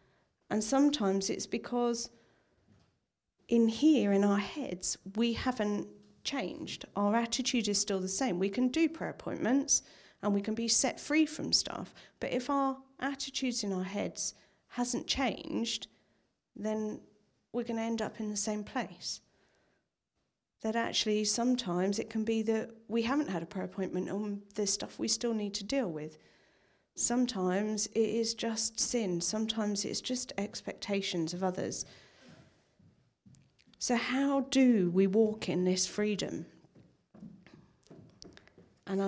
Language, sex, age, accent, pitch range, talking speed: English, female, 40-59, British, 195-235 Hz, 140 wpm